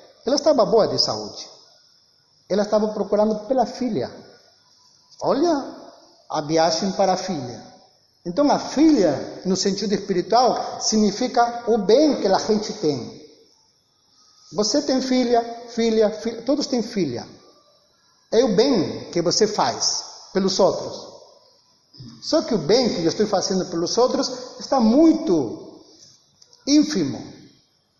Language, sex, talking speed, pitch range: Portuguese, male, 125 wpm, 200-260 Hz